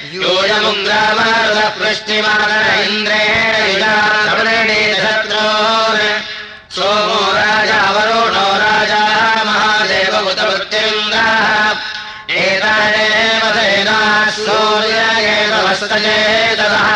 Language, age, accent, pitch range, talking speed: Russian, 30-49, Indian, 210-215 Hz, 50 wpm